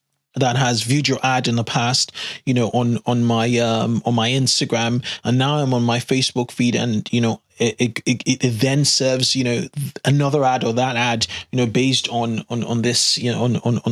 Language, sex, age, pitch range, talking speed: English, male, 20-39, 120-140 Hz, 205 wpm